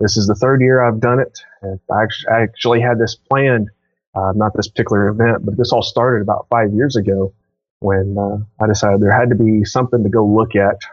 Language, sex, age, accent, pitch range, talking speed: English, male, 30-49, American, 105-125 Hz, 220 wpm